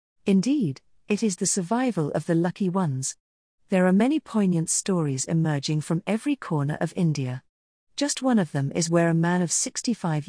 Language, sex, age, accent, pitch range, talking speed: English, female, 40-59, British, 160-210 Hz, 175 wpm